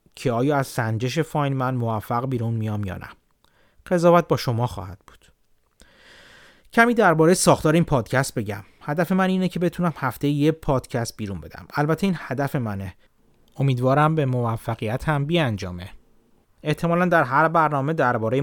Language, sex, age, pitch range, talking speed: Persian, male, 30-49, 115-155 Hz, 155 wpm